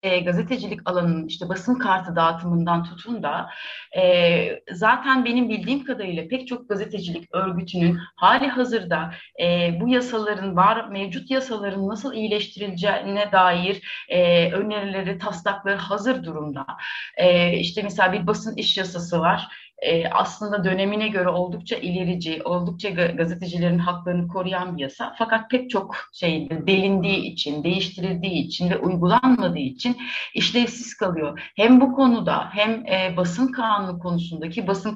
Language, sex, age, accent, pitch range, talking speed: Turkish, female, 30-49, native, 180-225 Hz, 125 wpm